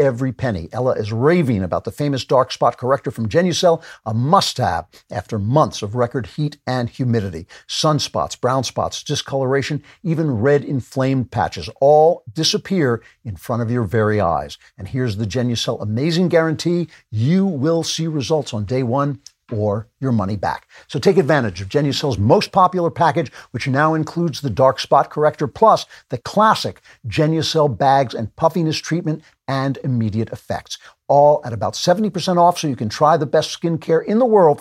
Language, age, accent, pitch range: English, 60-79, American, 120-160 Hz